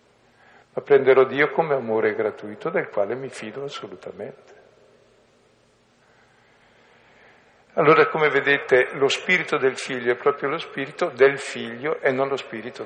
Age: 60-79